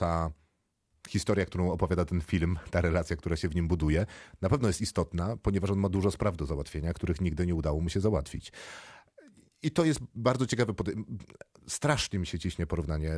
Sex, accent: male, native